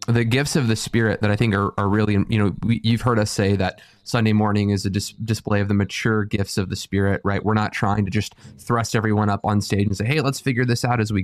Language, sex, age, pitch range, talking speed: English, male, 20-39, 105-120 Hz, 280 wpm